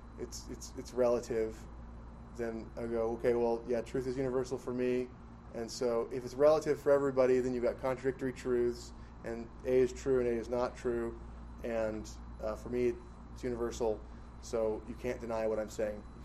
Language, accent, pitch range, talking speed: English, American, 110-125 Hz, 185 wpm